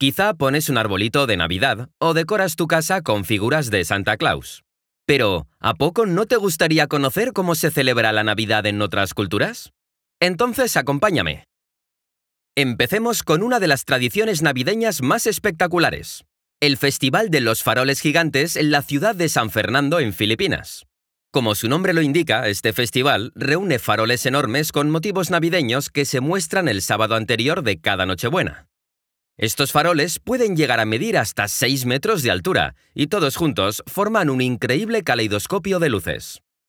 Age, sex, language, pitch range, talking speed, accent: 30-49, male, Spanish, 110-170 Hz, 160 wpm, Spanish